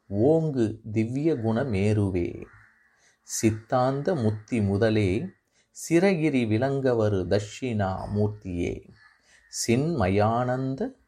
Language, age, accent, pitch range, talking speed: Tamil, 30-49, native, 105-140 Hz, 55 wpm